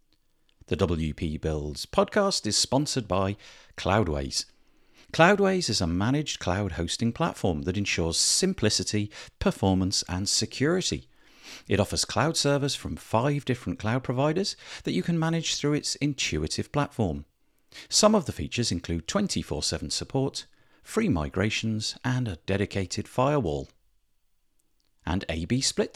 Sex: male